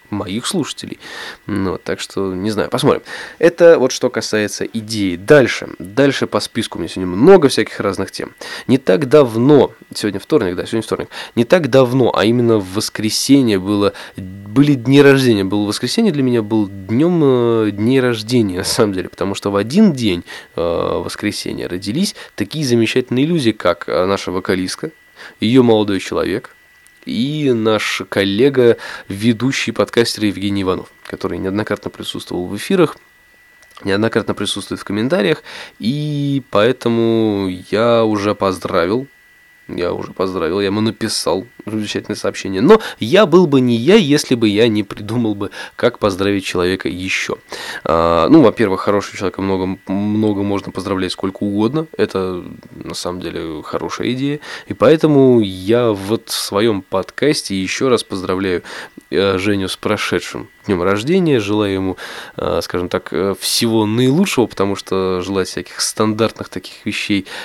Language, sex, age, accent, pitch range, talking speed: Russian, male, 20-39, native, 100-125 Hz, 145 wpm